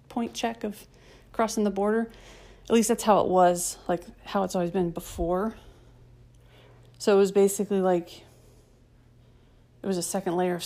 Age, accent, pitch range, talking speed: 30-49, American, 125-200 Hz, 165 wpm